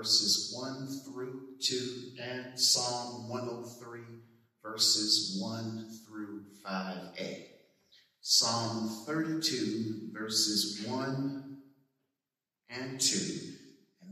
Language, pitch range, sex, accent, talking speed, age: English, 105-130 Hz, male, American, 75 wpm, 40-59